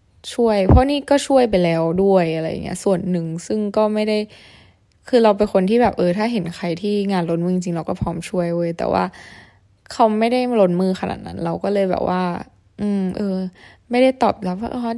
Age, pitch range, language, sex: 20-39, 175-220 Hz, Thai, female